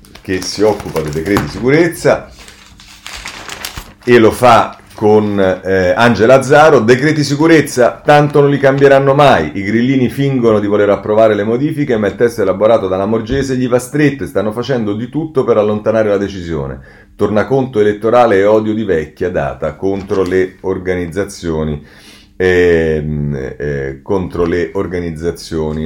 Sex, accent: male, native